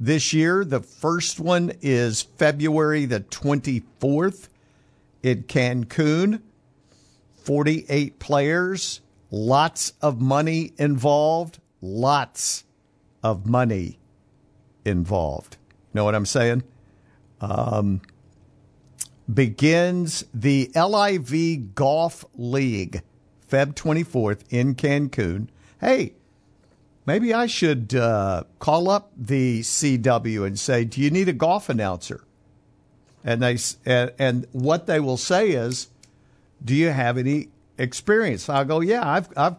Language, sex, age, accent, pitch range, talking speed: English, male, 50-69, American, 105-145 Hz, 110 wpm